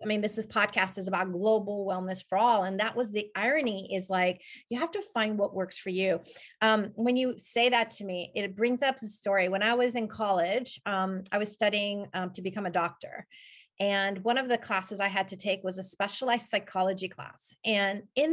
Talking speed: 225 wpm